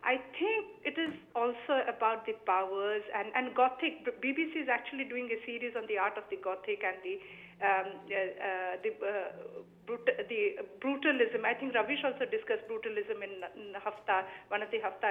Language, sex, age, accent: English, female, 50-69, Indian